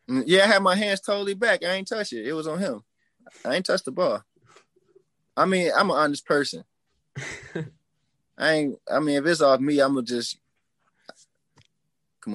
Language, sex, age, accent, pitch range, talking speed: English, male, 20-39, American, 115-155 Hz, 195 wpm